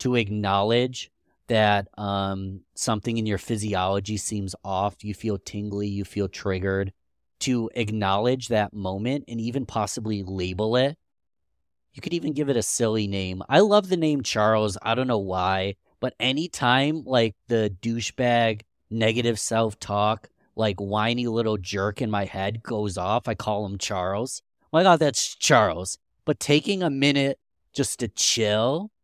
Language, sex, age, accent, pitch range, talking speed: English, male, 30-49, American, 100-135 Hz, 155 wpm